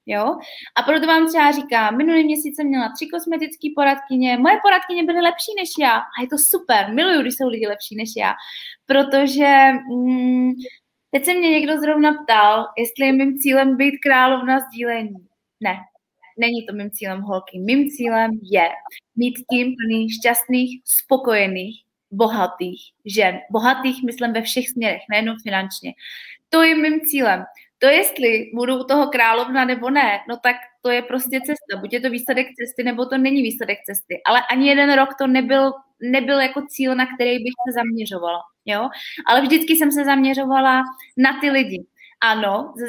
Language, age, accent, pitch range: Czech, 20-39, native, 230-280 Hz